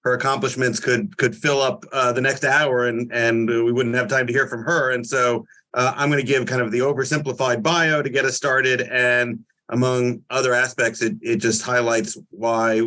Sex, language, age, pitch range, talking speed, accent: male, English, 30-49, 115-140 Hz, 215 wpm, American